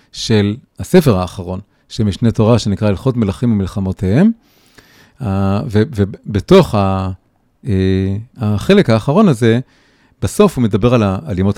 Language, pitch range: Hebrew, 105-145 Hz